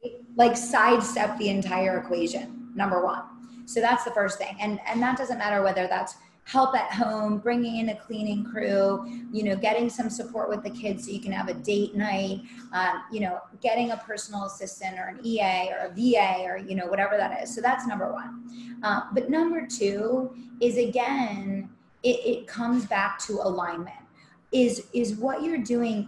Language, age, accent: English, 20-39, American